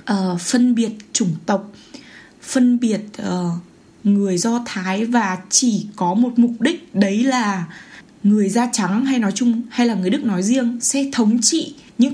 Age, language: 20-39, Vietnamese